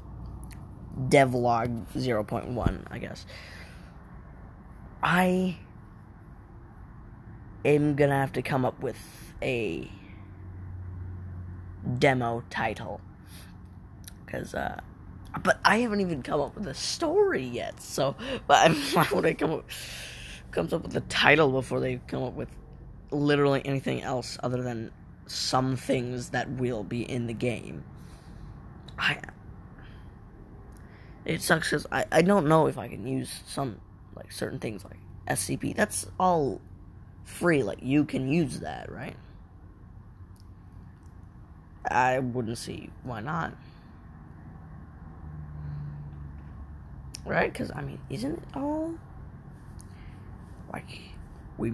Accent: American